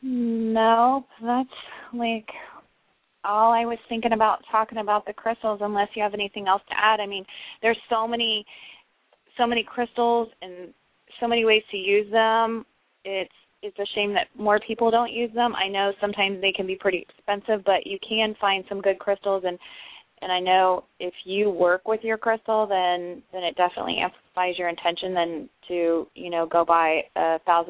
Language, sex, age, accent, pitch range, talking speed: English, female, 20-39, American, 175-215 Hz, 180 wpm